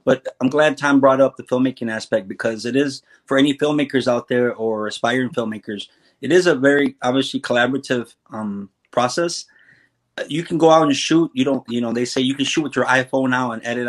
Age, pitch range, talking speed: 30-49, 115-135 Hz, 210 wpm